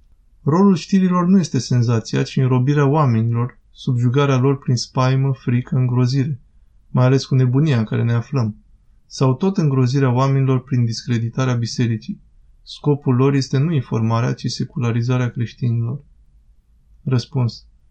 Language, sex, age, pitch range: Romanian, male, 20-39, 115-140 Hz